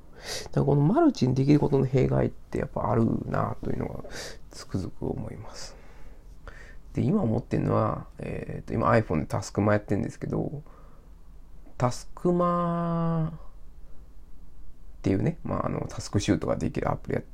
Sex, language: male, Japanese